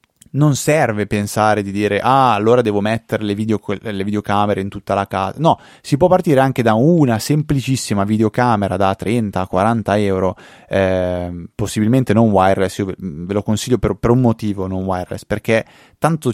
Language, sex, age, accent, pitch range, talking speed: Italian, male, 20-39, native, 95-115 Hz, 165 wpm